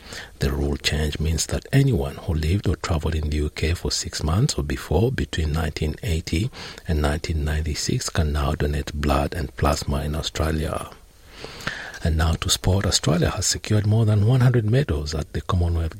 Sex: male